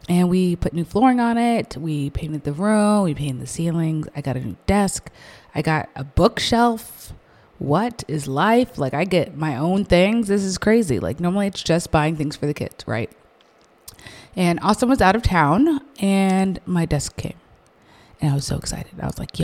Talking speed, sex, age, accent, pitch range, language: 200 wpm, female, 20-39, American, 145-205 Hz, English